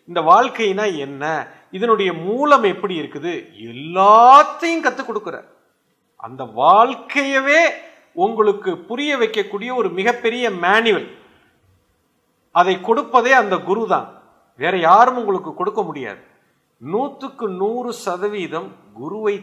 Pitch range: 145-210 Hz